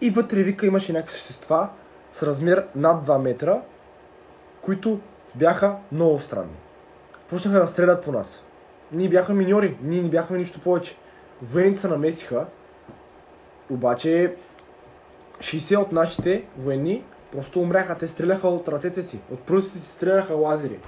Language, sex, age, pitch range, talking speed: Bulgarian, male, 20-39, 155-195 Hz, 140 wpm